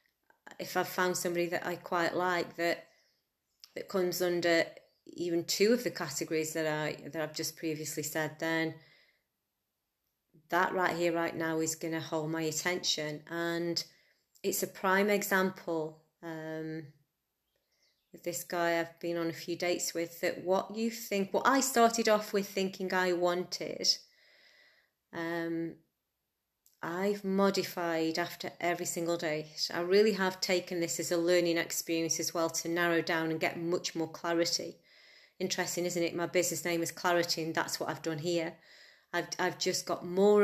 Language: English